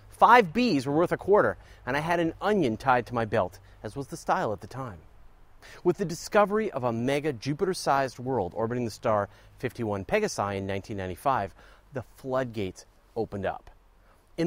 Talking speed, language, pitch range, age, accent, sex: 175 wpm, English, 100-170 Hz, 40-59, American, male